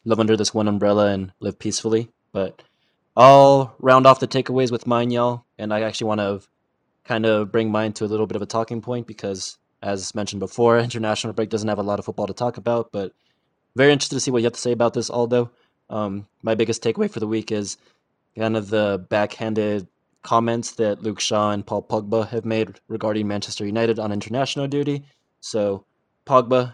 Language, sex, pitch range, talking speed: English, male, 105-120 Hz, 205 wpm